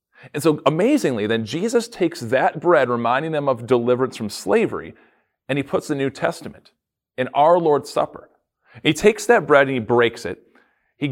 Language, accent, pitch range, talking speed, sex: English, American, 120-165 Hz, 180 wpm, male